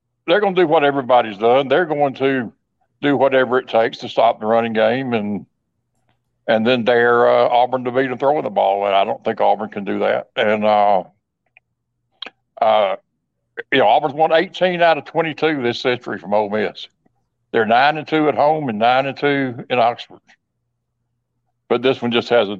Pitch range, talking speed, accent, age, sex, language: 110-140 Hz, 195 wpm, American, 60-79, male, English